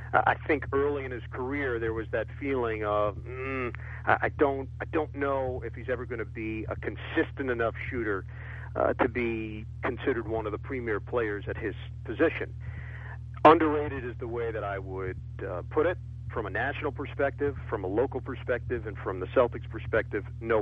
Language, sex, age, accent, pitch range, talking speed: English, male, 50-69, American, 110-130 Hz, 185 wpm